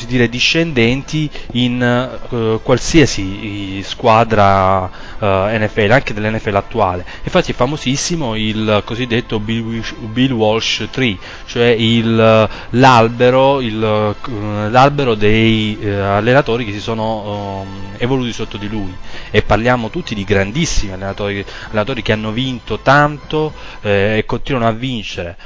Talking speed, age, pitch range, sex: 130 wpm, 20-39, 105-120 Hz, male